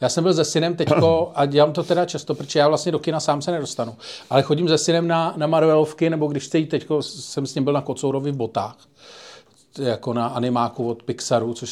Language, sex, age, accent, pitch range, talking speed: Czech, male, 40-59, native, 125-165 Hz, 230 wpm